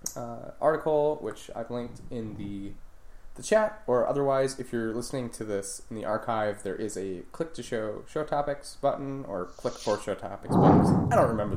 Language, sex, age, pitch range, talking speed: English, male, 20-39, 105-140 Hz, 190 wpm